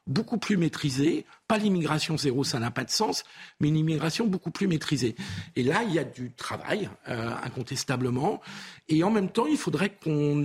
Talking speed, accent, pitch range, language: 190 wpm, French, 135-180 Hz, French